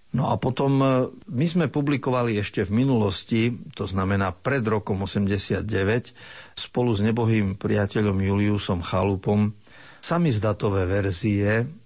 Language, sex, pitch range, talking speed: Slovak, male, 100-115 Hz, 110 wpm